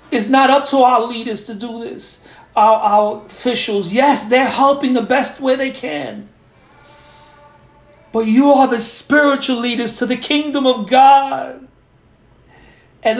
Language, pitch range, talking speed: English, 240-270 Hz, 145 wpm